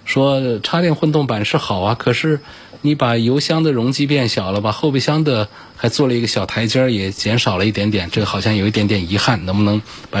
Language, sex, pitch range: Chinese, male, 95-120 Hz